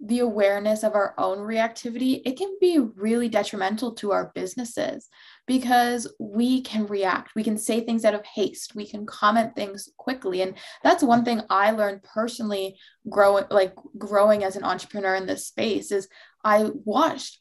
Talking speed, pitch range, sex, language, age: 170 wpm, 195-235 Hz, female, English, 20-39